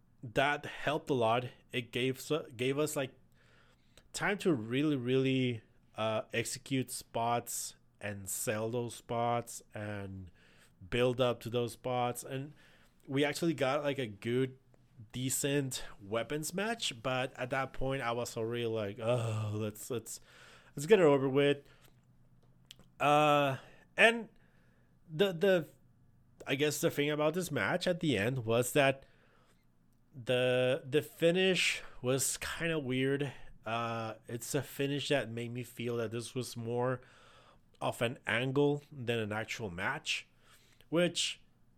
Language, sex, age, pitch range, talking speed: English, male, 30-49, 115-140 Hz, 135 wpm